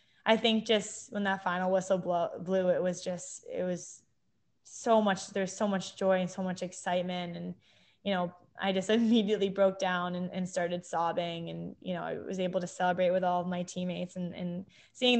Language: English